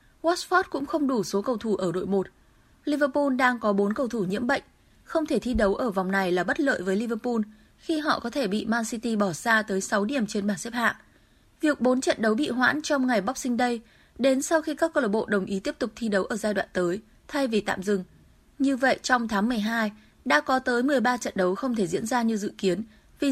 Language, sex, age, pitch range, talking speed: Vietnamese, female, 20-39, 205-270 Hz, 245 wpm